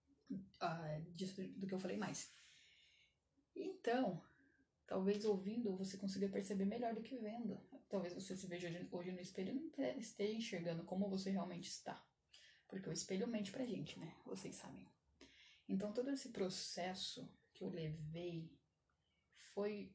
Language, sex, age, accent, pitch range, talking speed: Portuguese, female, 10-29, Brazilian, 175-210 Hz, 150 wpm